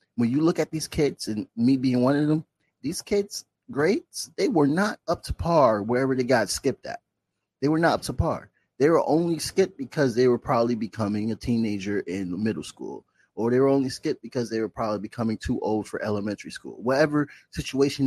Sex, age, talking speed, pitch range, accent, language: male, 30-49, 210 wpm, 110-145 Hz, American, English